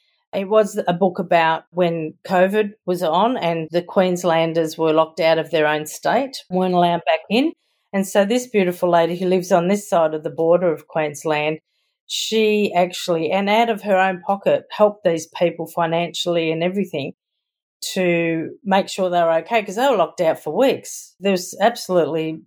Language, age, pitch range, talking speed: English, 40-59, 165-210 Hz, 180 wpm